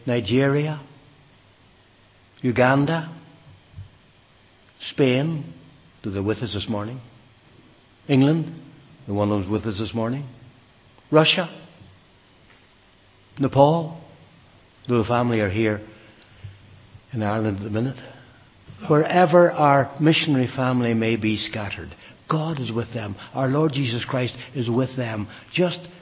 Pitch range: 110-150 Hz